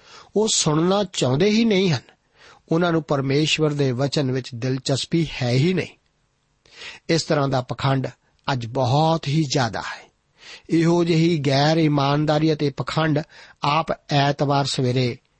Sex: male